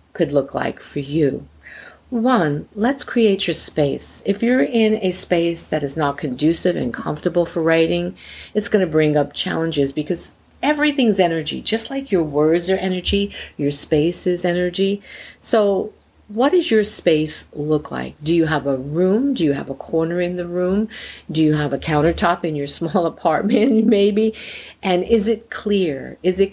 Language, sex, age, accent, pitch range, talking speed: English, female, 50-69, American, 140-190 Hz, 175 wpm